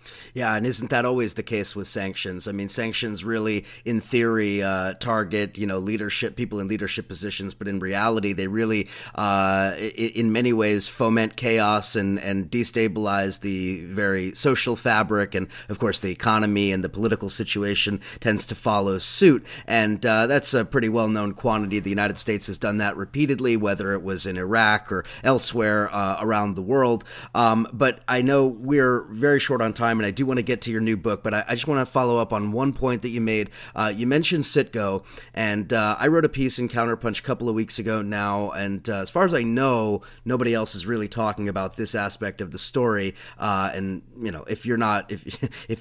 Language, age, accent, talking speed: English, 30-49, American, 210 wpm